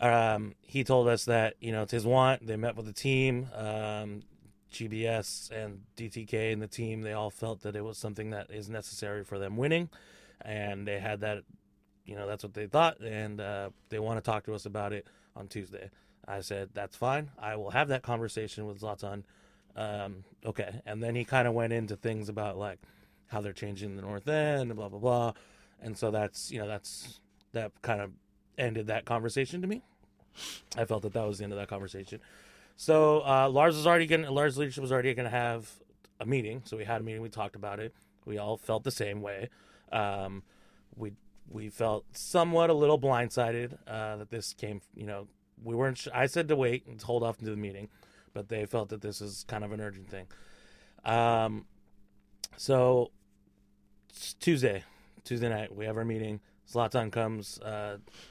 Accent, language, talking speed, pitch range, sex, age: American, English, 200 wpm, 100-120 Hz, male, 20-39